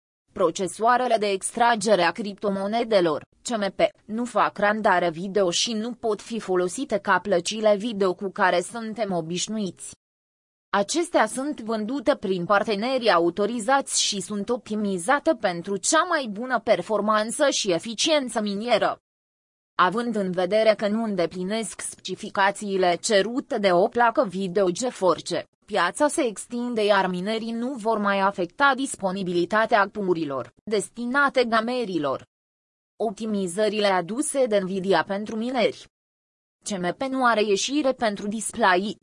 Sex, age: female, 20-39